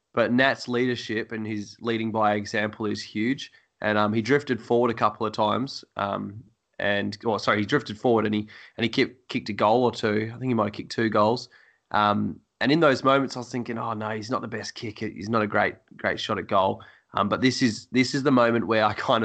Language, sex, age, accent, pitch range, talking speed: English, male, 20-39, Australian, 105-120 Hz, 245 wpm